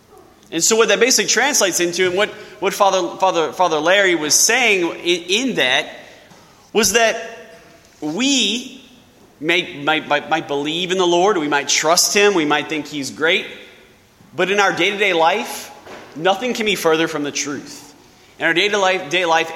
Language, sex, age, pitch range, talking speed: English, male, 20-39, 145-190 Hz, 165 wpm